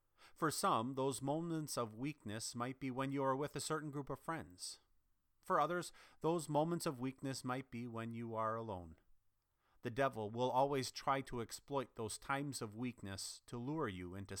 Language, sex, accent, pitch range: English, male, American, 105-140 Hz